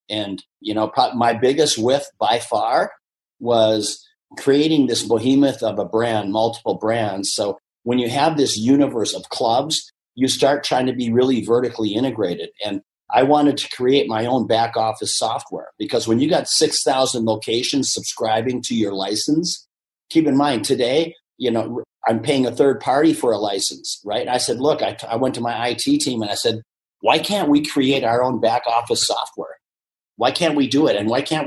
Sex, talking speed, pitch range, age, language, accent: male, 185 wpm, 115-145 Hz, 50-69, English, American